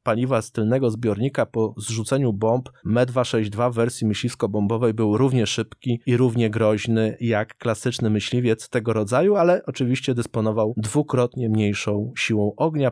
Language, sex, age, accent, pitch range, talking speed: Polish, male, 20-39, native, 115-145 Hz, 140 wpm